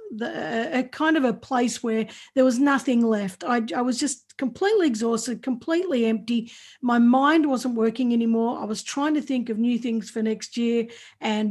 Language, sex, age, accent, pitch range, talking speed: English, female, 50-69, Australian, 225-270 Hz, 190 wpm